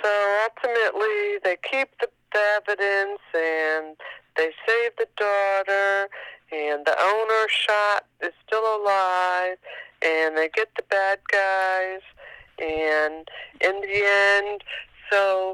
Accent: American